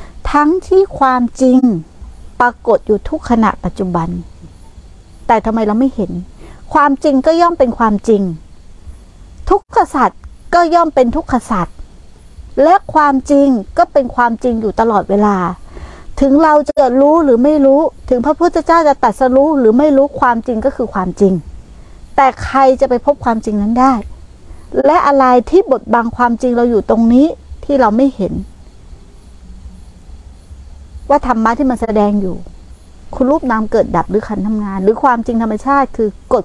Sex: female